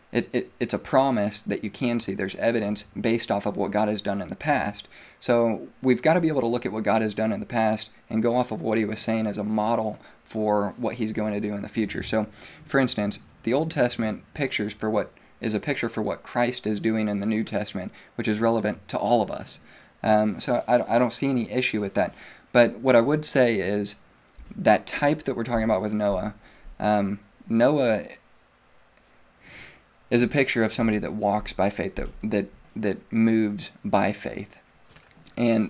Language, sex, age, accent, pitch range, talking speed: English, male, 20-39, American, 105-115 Hz, 215 wpm